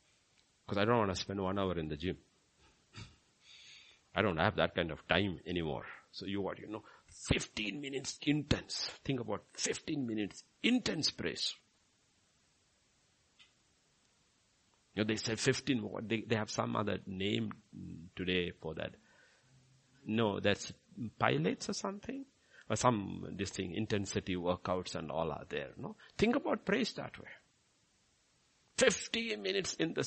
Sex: male